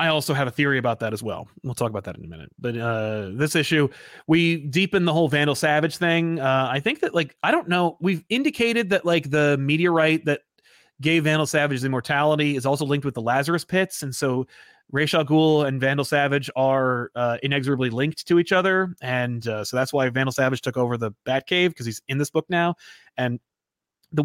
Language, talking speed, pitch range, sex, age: English, 215 wpm, 130-165 Hz, male, 30-49